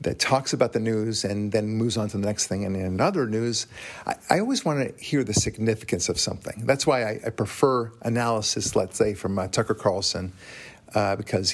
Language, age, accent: English, 50-69, American